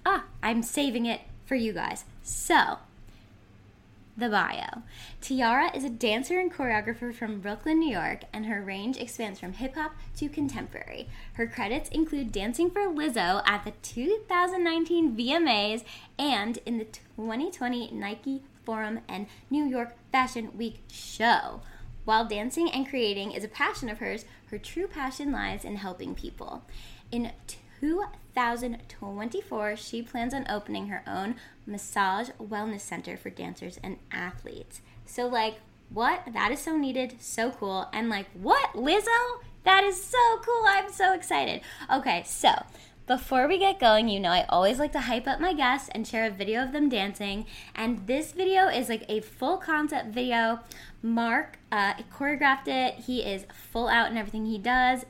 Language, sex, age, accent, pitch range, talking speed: English, female, 10-29, American, 215-280 Hz, 160 wpm